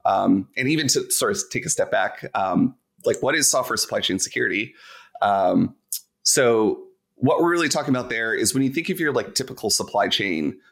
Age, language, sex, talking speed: 30-49, English, male, 200 wpm